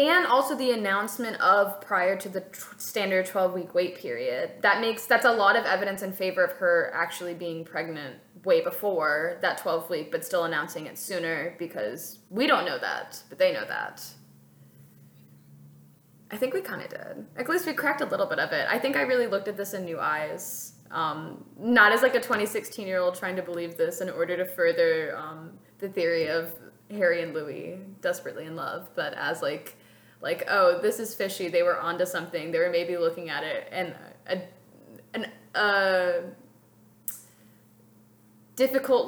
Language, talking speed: English, 180 wpm